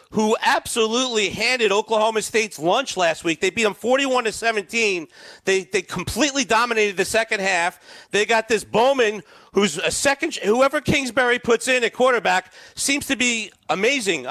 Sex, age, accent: male, 40-59, American